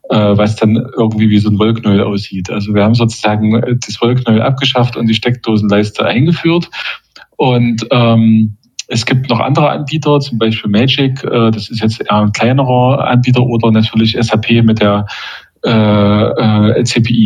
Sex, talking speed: male, 155 wpm